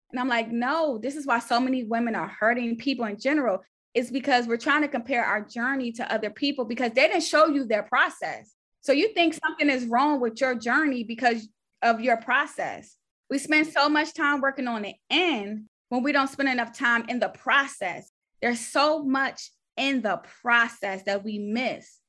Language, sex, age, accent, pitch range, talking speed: English, female, 20-39, American, 225-270 Hz, 200 wpm